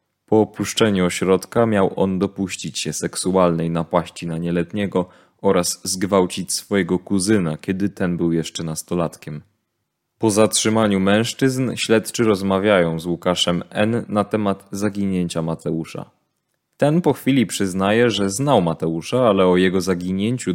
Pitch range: 90-110 Hz